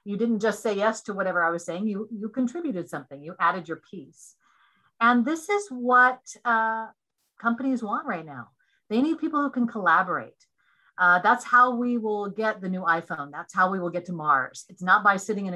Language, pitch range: English, 180-245 Hz